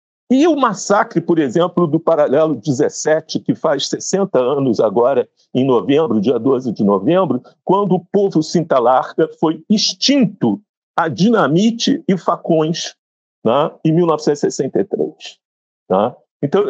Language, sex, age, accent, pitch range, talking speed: Portuguese, male, 50-69, Brazilian, 170-230 Hz, 120 wpm